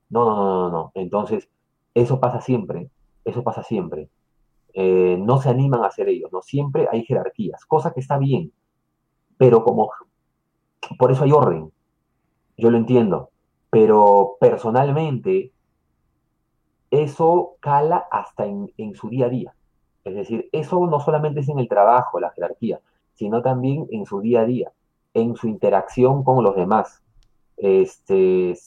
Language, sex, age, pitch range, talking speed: Spanish, male, 30-49, 110-140 Hz, 150 wpm